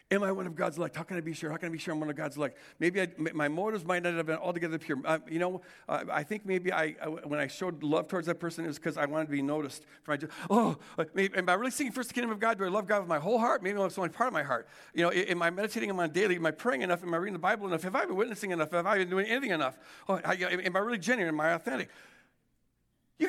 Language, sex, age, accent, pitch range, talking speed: English, male, 60-79, American, 170-255 Hz, 315 wpm